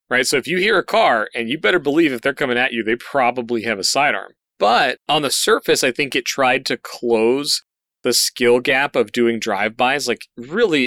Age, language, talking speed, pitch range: 30-49, English, 215 wpm, 115-135 Hz